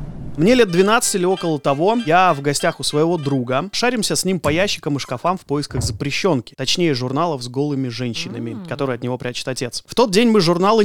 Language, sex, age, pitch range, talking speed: Russian, male, 30-49, 140-195 Hz, 205 wpm